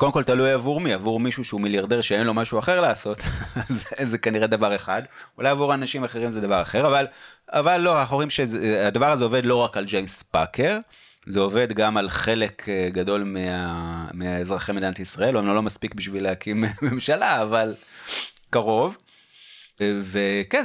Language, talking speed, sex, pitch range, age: Hebrew, 165 wpm, male, 100-130 Hz, 30-49